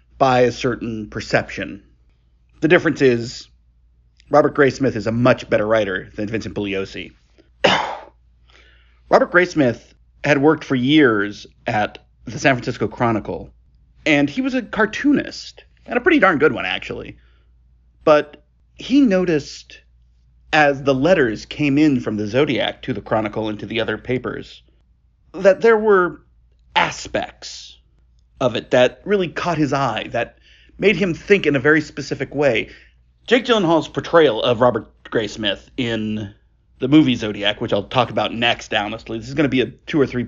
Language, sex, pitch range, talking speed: English, male, 95-155 Hz, 155 wpm